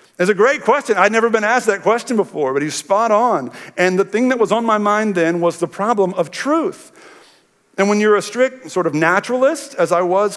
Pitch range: 140-205 Hz